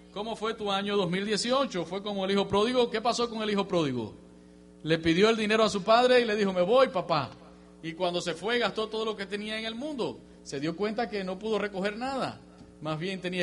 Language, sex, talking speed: English, male, 230 wpm